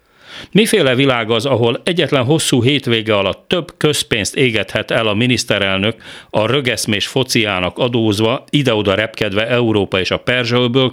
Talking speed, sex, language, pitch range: 130 wpm, male, Hungarian, 100-135 Hz